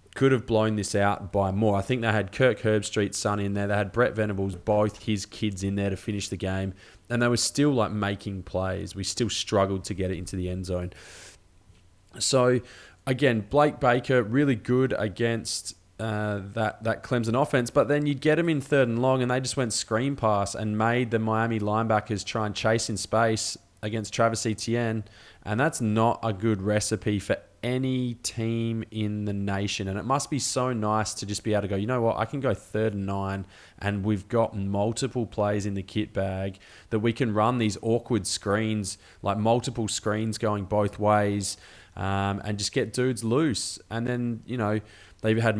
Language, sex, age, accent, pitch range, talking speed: English, male, 20-39, Australian, 100-120 Hz, 200 wpm